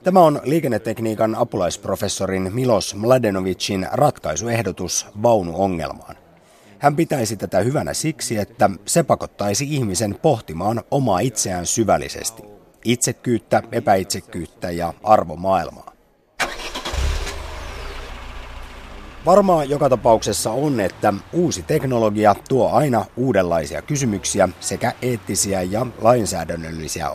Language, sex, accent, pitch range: Finnish, male, native, 95-125 Hz